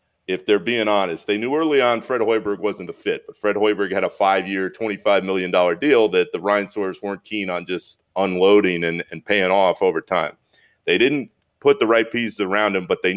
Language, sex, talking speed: English, male, 215 wpm